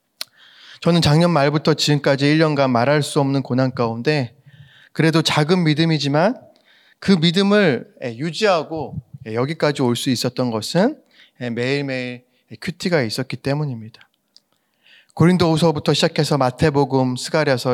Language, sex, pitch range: Korean, male, 130-170 Hz